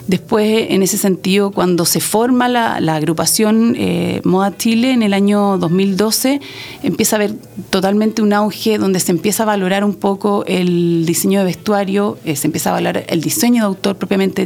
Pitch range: 185-220 Hz